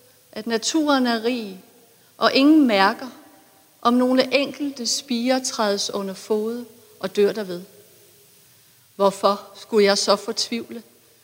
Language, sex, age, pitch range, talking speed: Danish, female, 60-79, 190-250 Hz, 115 wpm